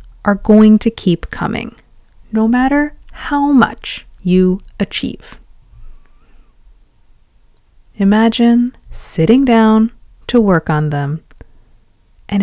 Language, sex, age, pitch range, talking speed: English, female, 20-39, 150-225 Hz, 90 wpm